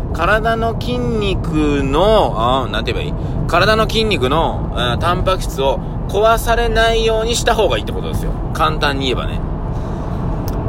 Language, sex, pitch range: Japanese, male, 105-155 Hz